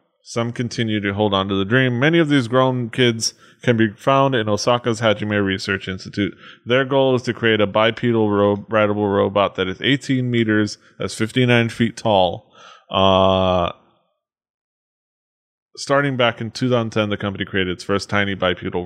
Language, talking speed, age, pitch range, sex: English, 160 wpm, 20-39, 100-130 Hz, male